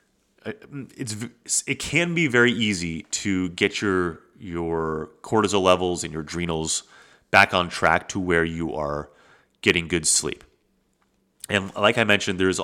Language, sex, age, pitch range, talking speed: English, male, 30-49, 85-120 Hz, 140 wpm